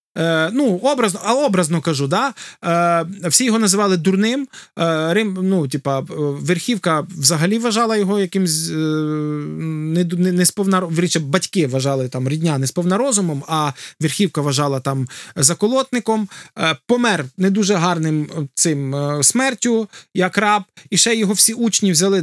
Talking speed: 130 wpm